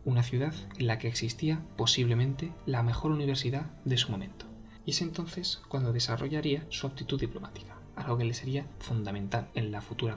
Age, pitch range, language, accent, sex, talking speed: 20-39, 115-140 Hz, Spanish, Spanish, male, 170 wpm